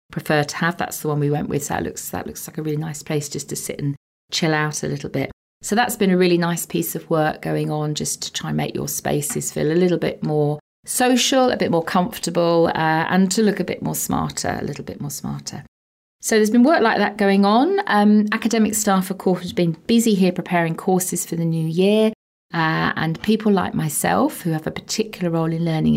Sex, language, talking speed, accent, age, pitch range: female, English, 240 wpm, British, 40-59, 150-190 Hz